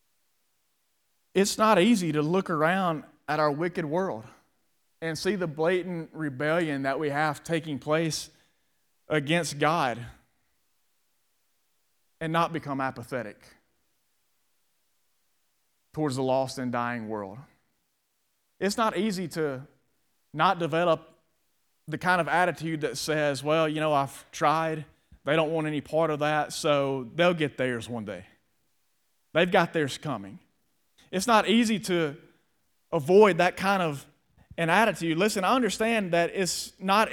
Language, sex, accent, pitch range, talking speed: English, male, American, 155-185 Hz, 135 wpm